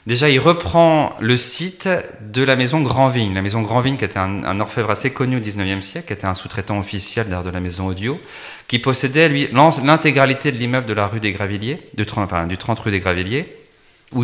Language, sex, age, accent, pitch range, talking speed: French, male, 40-59, French, 100-130 Hz, 225 wpm